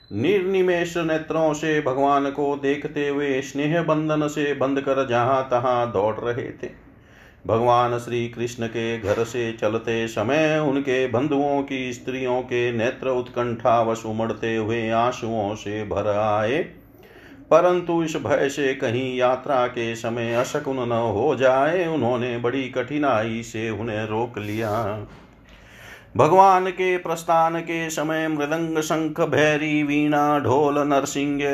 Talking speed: 130 wpm